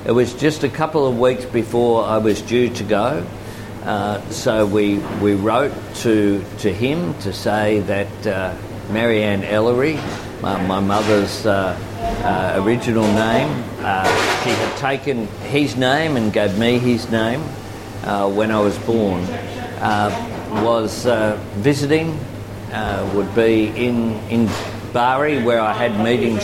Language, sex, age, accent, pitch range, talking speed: Italian, male, 50-69, Australian, 105-120 Hz, 145 wpm